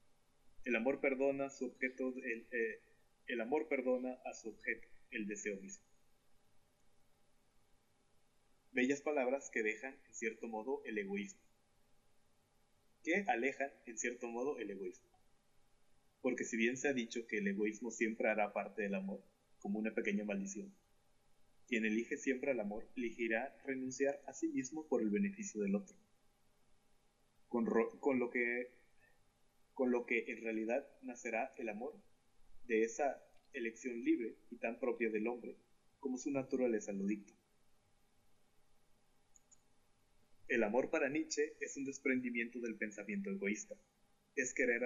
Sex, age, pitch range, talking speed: male, 30-49, 110-135 Hz, 130 wpm